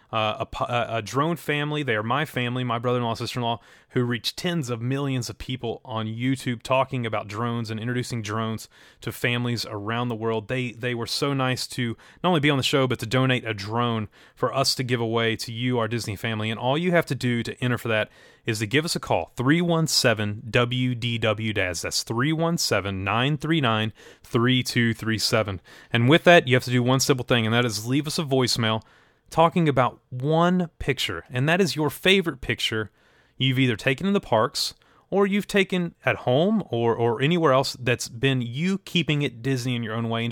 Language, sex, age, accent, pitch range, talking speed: English, male, 30-49, American, 115-140 Hz, 200 wpm